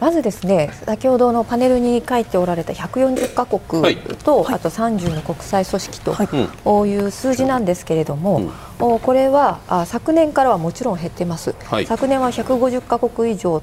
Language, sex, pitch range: Japanese, female, 185-265 Hz